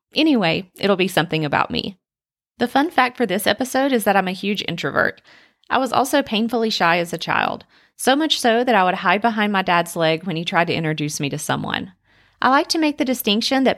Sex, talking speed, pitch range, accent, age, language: female, 225 wpm, 175-245 Hz, American, 30-49, English